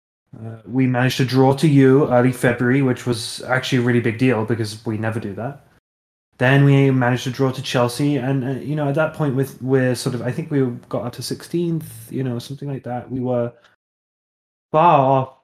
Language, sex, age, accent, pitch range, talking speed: English, male, 20-39, British, 120-135 Hz, 210 wpm